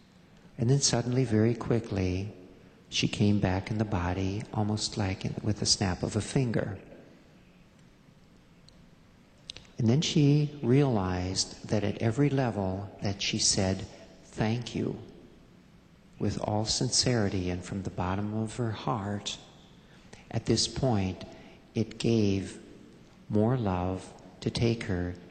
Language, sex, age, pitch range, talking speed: Persian, male, 50-69, 100-115 Hz, 125 wpm